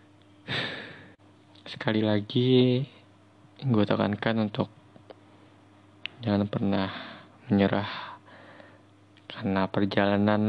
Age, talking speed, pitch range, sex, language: 20-39, 55 wpm, 100-115 Hz, male, Indonesian